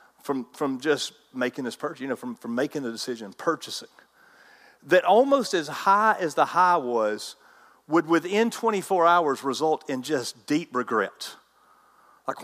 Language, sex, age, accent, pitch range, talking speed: English, male, 40-59, American, 155-215 Hz, 155 wpm